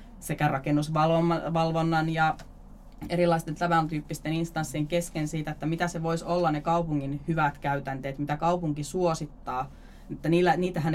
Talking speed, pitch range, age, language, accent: 120 wpm, 140-170 Hz, 30-49, Finnish, native